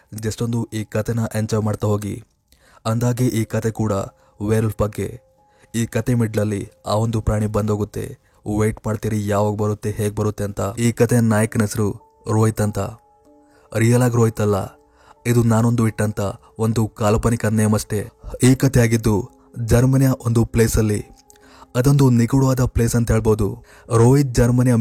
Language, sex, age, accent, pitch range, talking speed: Kannada, male, 20-39, native, 110-120 Hz, 140 wpm